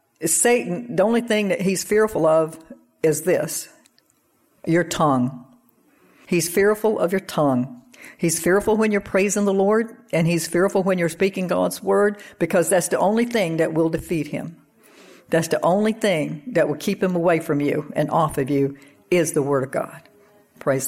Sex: female